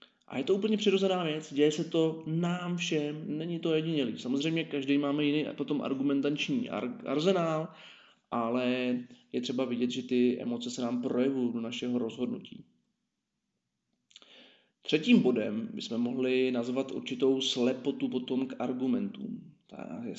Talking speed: 135 wpm